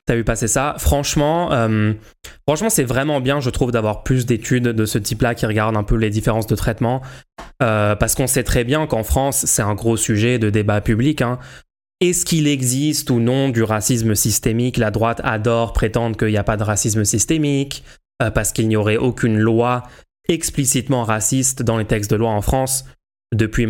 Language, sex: French, male